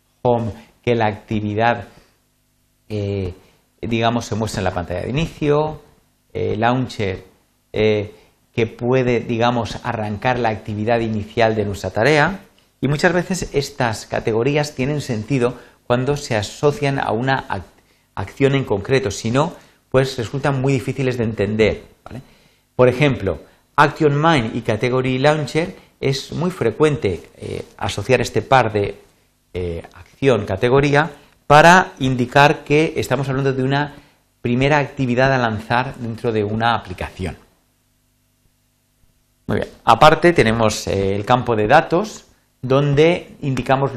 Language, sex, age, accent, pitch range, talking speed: Spanish, male, 40-59, Spanish, 105-140 Hz, 125 wpm